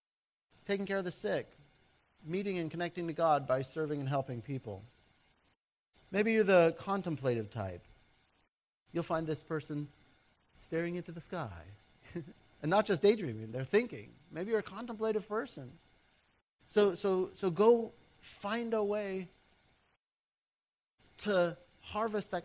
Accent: American